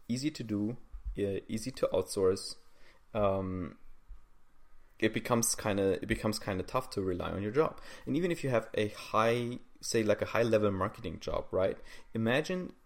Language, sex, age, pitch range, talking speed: English, male, 20-39, 100-125 Hz, 175 wpm